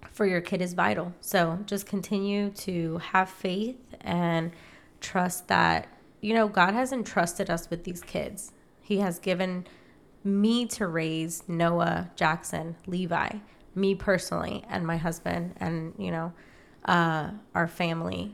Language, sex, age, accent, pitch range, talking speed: English, female, 20-39, American, 170-210 Hz, 140 wpm